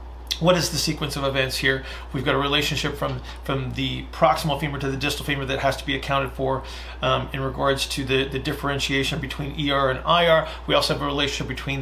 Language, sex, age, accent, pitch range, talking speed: English, male, 40-59, American, 125-145 Hz, 220 wpm